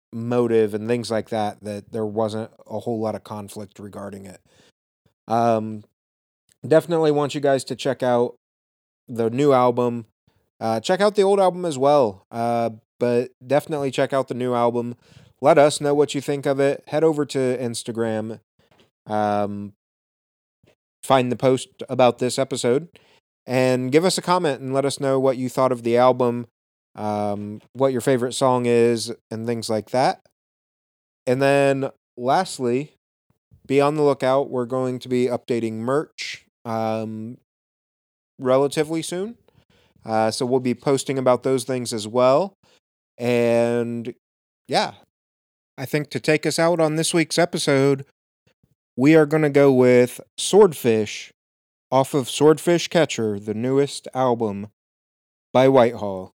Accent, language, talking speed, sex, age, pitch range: American, English, 150 wpm, male, 20-39, 110-140 Hz